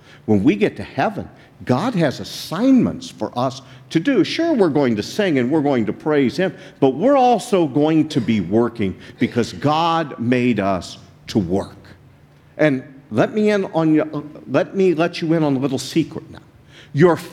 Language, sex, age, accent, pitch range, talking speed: English, male, 50-69, American, 125-165 Hz, 175 wpm